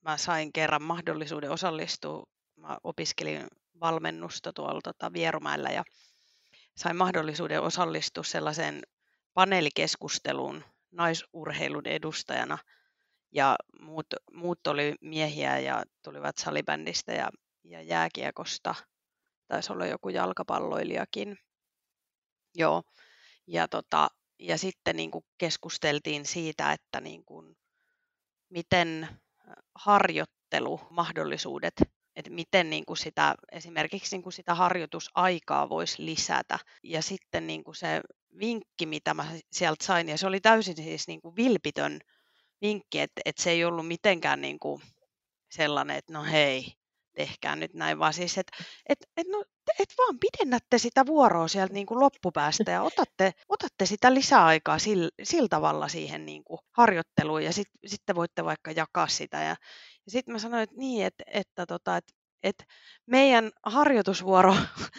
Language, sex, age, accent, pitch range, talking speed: Finnish, female, 30-49, native, 155-220 Hz, 120 wpm